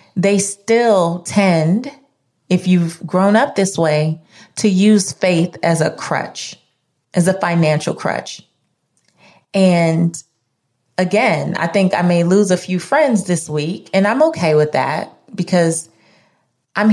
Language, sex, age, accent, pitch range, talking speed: English, female, 30-49, American, 165-220 Hz, 135 wpm